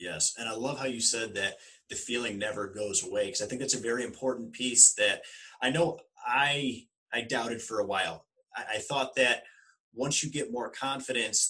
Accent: American